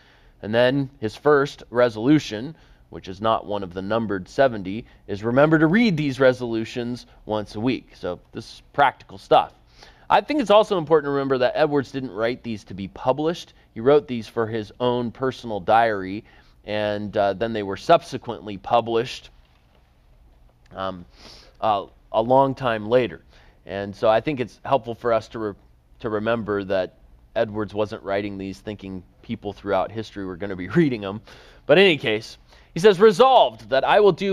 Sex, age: male, 30-49